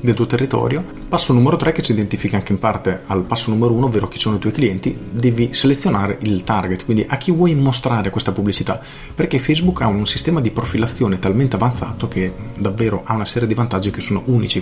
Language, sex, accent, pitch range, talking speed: Italian, male, native, 105-135 Hz, 215 wpm